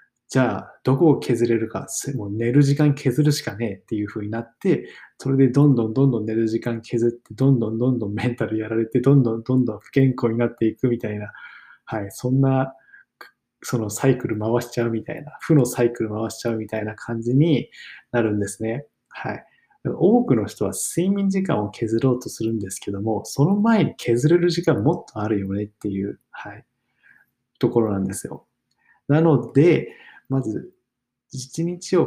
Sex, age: male, 20-39